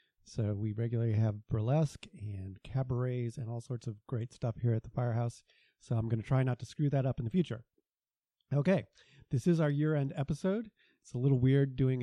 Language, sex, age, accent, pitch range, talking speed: English, male, 30-49, American, 120-145 Hz, 205 wpm